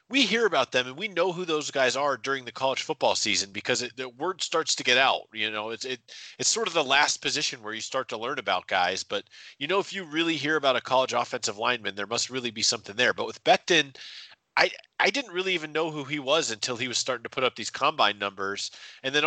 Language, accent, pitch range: English, American, 115-155 Hz